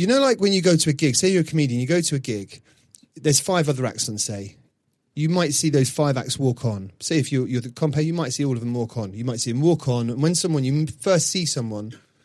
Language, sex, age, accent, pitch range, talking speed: English, male, 30-49, British, 120-155 Hz, 285 wpm